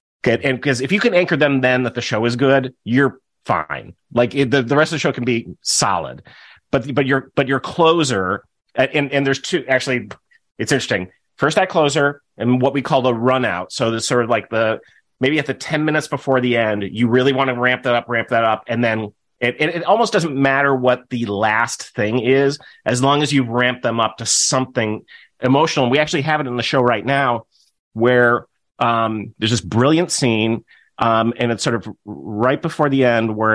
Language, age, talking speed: English, 30-49, 220 wpm